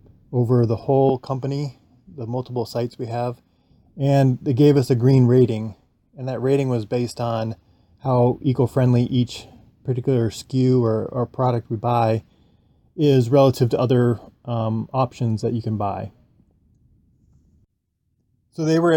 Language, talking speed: English, 140 wpm